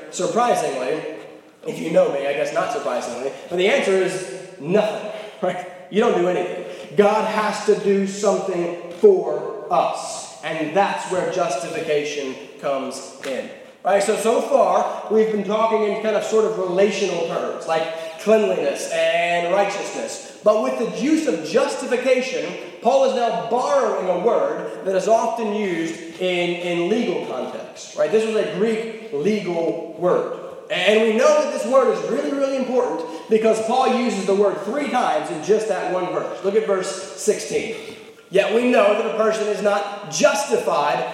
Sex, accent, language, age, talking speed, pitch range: male, American, English, 20-39, 165 wpm, 175-220 Hz